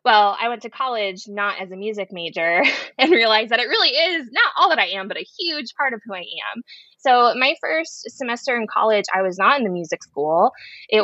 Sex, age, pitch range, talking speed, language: female, 20-39, 175-230 Hz, 235 wpm, English